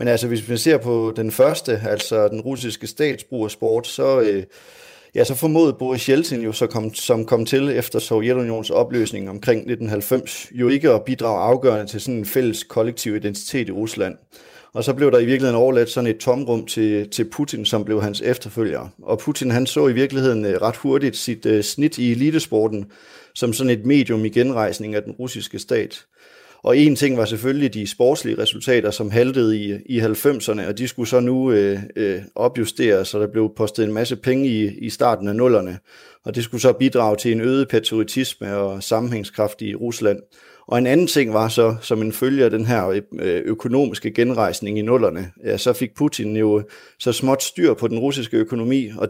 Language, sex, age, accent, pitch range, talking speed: Danish, male, 30-49, native, 110-130 Hz, 190 wpm